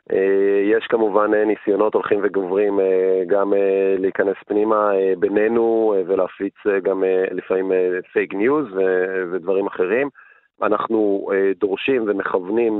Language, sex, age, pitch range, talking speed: Hebrew, male, 30-49, 95-120 Hz, 90 wpm